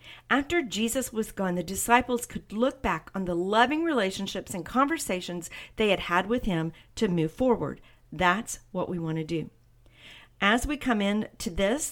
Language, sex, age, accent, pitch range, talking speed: English, female, 50-69, American, 170-230 Hz, 175 wpm